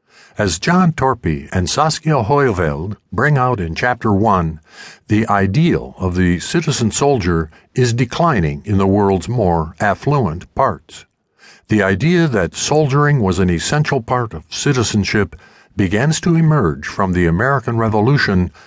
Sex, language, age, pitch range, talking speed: male, English, 60-79, 90-135 Hz, 130 wpm